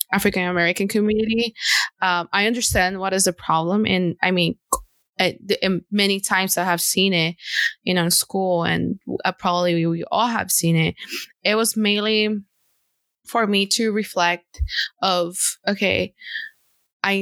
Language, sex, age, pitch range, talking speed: English, female, 20-39, 180-215 Hz, 135 wpm